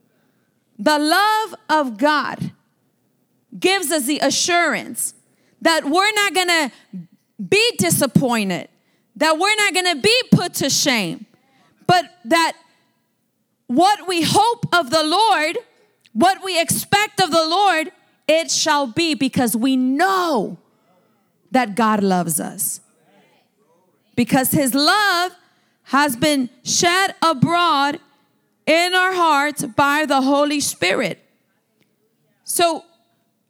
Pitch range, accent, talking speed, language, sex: 275-360 Hz, American, 115 wpm, English, female